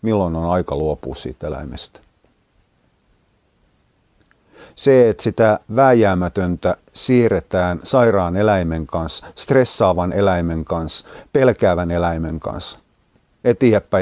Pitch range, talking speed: 90-115 Hz, 90 wpm